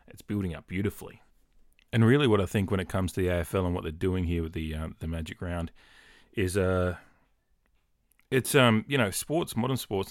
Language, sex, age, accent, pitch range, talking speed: English, male, 30-49, Australian, 85-100 Hz, 215 wpm